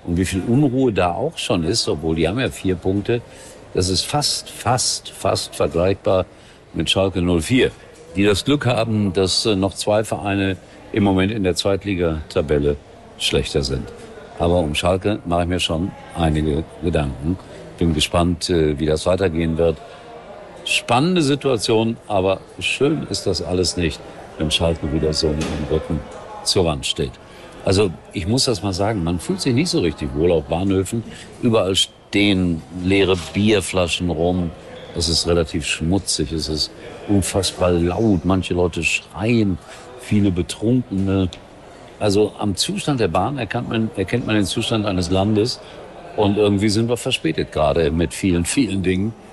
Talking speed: 155 wpm